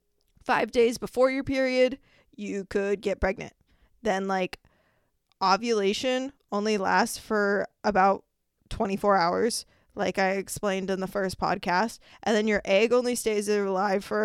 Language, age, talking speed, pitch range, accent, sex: English, 20-39, 140 wpm, 190-225 Hz, American, female